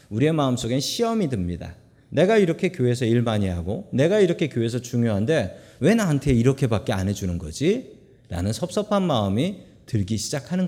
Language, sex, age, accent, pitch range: Korean, male, 40-59, native, 115-175 Hz